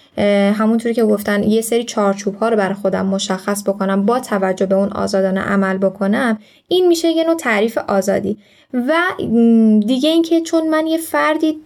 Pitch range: 210-270 Hz